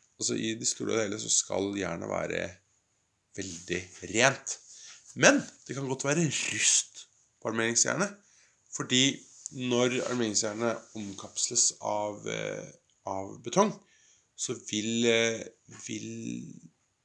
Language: English